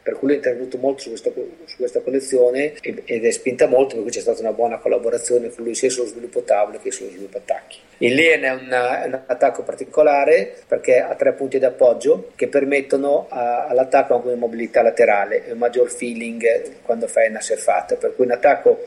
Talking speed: 205 wpm